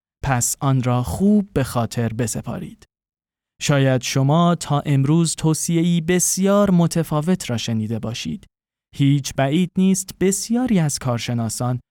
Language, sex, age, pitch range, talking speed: Persian, male, 20-39, 120-170 Hz, 115 wpm